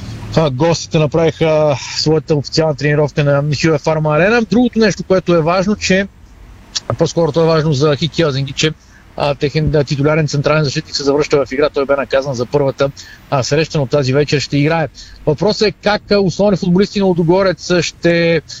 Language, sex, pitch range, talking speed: Bulgarian, male, 150-180 Hz, 160 wpm